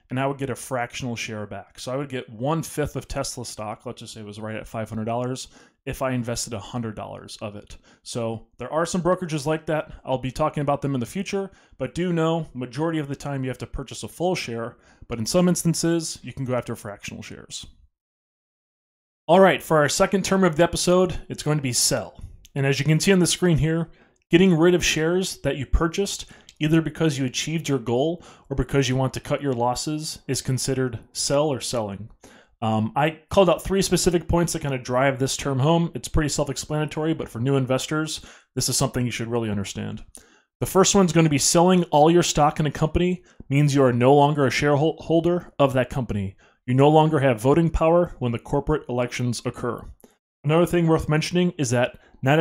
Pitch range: 120-160 Hz